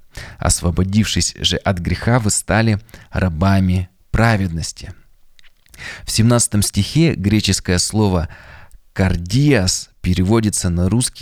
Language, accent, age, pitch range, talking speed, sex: Russian, native, 20-39, 90-105 Hz, 90 wpm, male